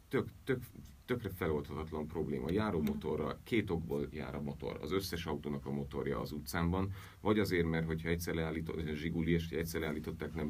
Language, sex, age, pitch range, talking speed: Hungarian, male, 40-59, 80-95 Hz, 165 wpm